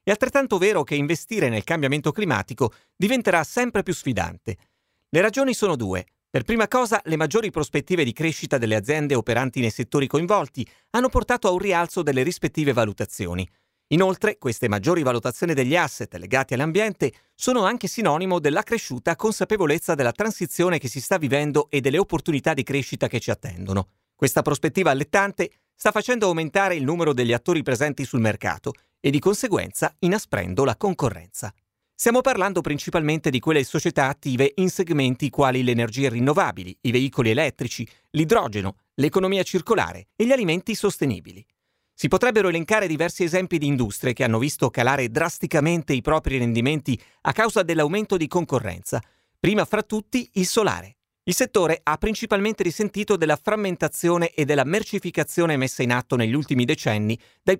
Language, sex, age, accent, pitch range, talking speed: Italian, male, 40-59, native, 130-190 Hz, 155 wpm